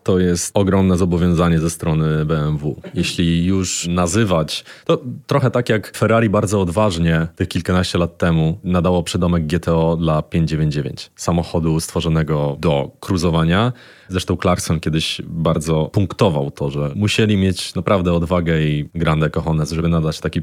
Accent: native